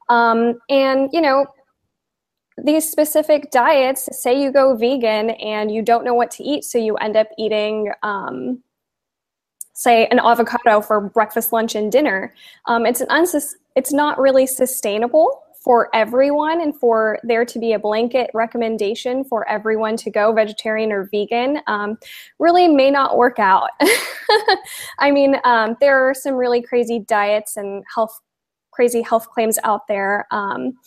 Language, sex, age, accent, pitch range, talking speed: English, female, 10-29, American, 220-275 Hz, 155 wpm